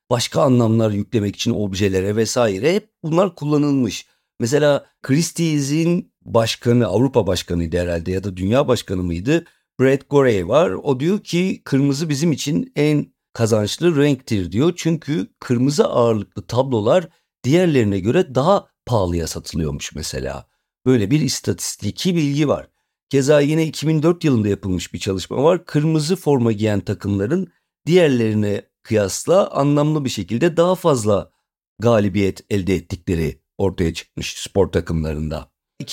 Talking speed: 125 wpm